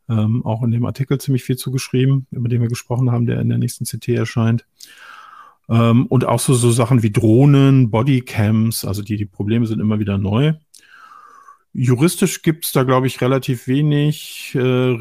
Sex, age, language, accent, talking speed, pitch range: male, 50-69, German, German, 180 wpm, 110-130 Hz